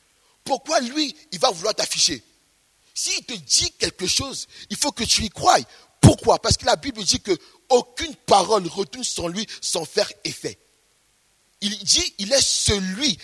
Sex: male